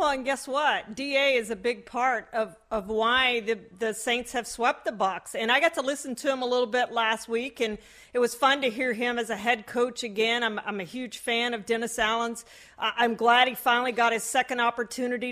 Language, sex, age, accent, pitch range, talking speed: English, female, 40-59, American, 235-280 Hz, 230 wpm